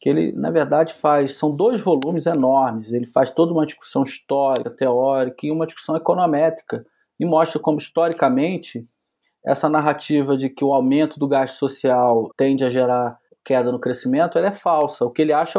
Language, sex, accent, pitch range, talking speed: Portuguese, male, Brazilian, 130-175 Hz, 175 wpm